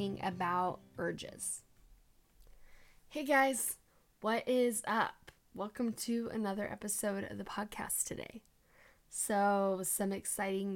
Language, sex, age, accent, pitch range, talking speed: English, female, 10-29, American, 180-210 Hz, 100 wpm